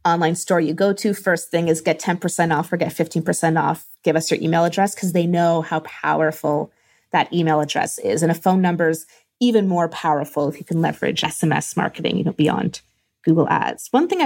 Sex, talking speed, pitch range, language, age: female, 210 wpm, 170-225 Hz, English, 20-39